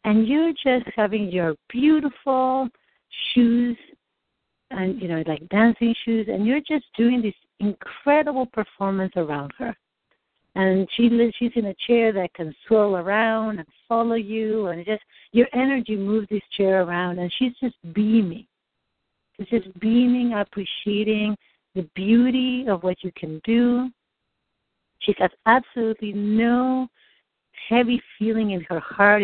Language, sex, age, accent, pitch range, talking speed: English, female, 60-79, American, 185-235 Hz, 140 wpm